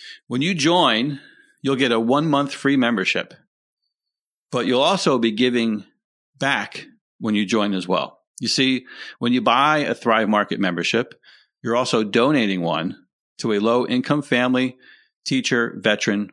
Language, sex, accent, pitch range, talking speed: English, male, American, 115-150 Hz, 145 wpm